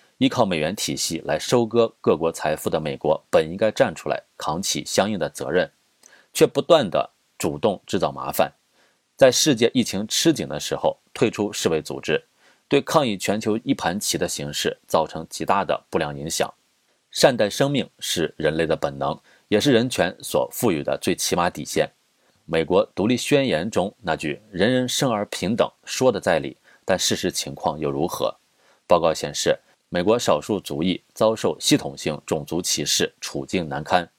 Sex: male